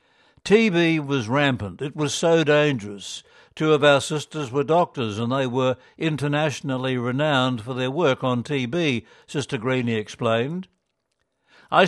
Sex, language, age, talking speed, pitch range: male, English, 60-79, 135 wpm, 125-150 Hz